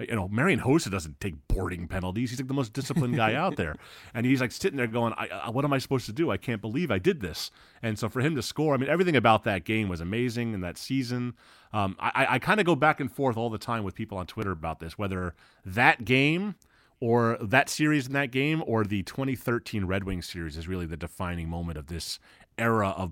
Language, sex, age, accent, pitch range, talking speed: English, male, 30-49, American, 95-120 Hz, 245 wpm